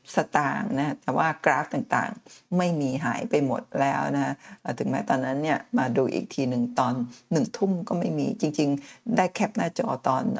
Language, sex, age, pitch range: Thai, female, 60-79, 145-215 Hz